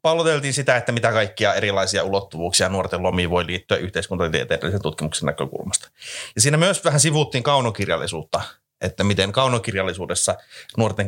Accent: native